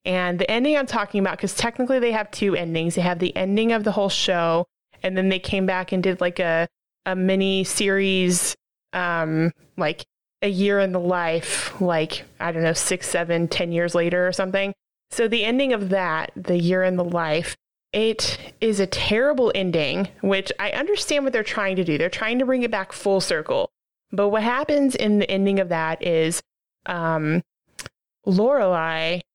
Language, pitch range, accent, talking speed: English, 175-215 Hz, American, 190 wpm